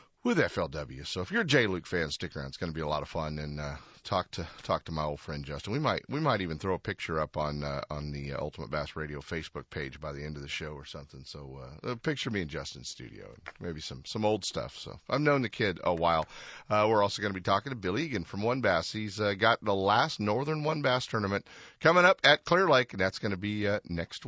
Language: English